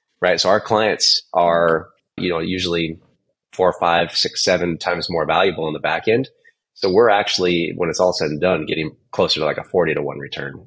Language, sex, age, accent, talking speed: English, male, 30-49, American, 210 wpm